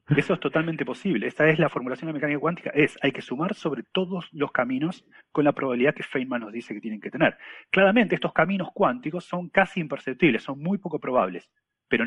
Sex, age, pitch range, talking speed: male, 30-49, 130-190 Hz, 215 wpm